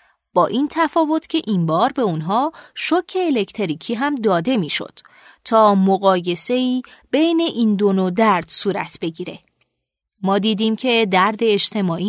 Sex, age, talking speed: female, 30-49, 140 wpm